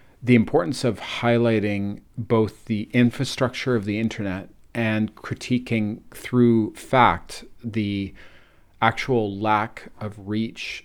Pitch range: 95-110 Hz